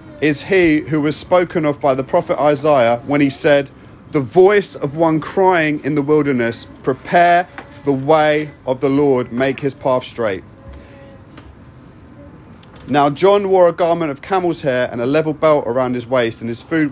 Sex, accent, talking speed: male, British, 175 wpm